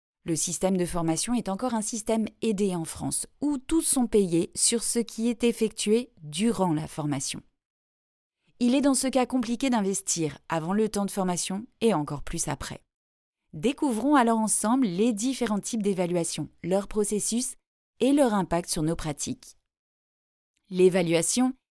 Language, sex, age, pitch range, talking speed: French, female, 30-49, 180-245 Hz, 150 wpm